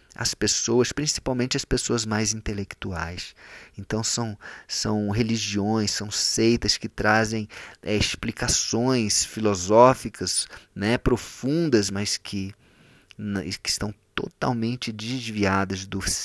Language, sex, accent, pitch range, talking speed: Portuguese, male, Brazilian, 95-115 Hz, 90 wpm